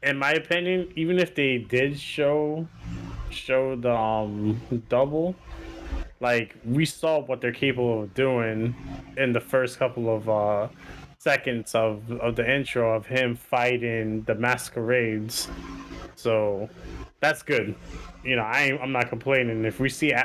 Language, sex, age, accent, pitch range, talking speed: English, male, 20-39, American, 115-135 Hz, 145 wpm